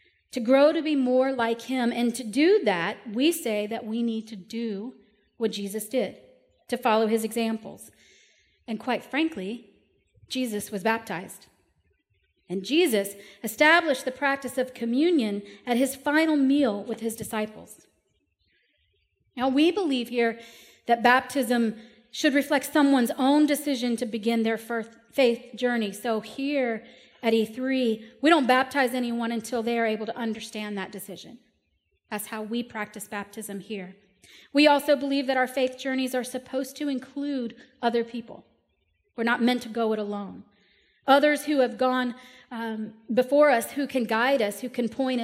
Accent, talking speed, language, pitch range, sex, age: American, 155 wpm, English, 225-265 Hz, female, 40-59